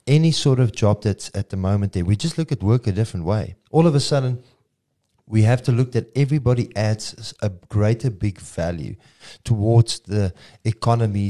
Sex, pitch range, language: male, 100-115 Hz, English